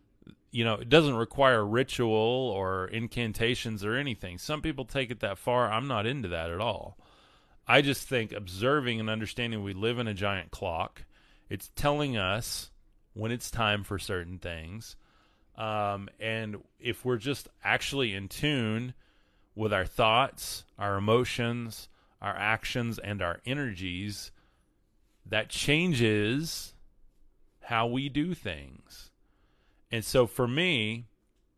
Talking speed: 135 wpm